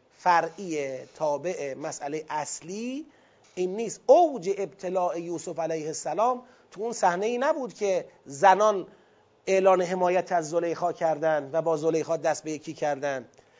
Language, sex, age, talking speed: Persian, male, 30-49, 130 wpm